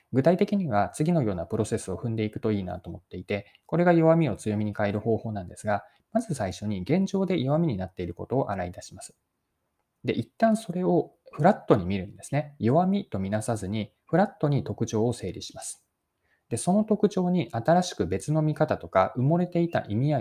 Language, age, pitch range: Japanese, 20-39, 105-155 Hz